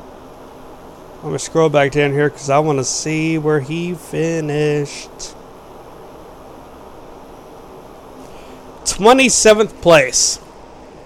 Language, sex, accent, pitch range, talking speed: English, male, American, 135-190 Hz, 90 wpm